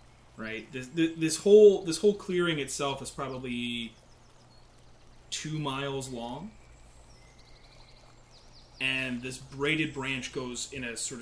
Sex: male